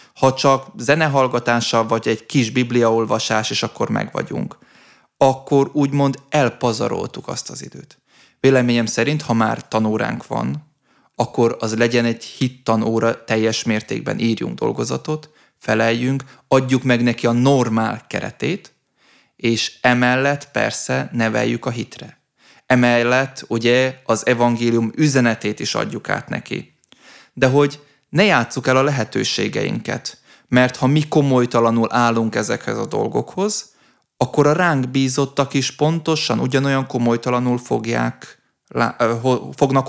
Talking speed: 115 wpm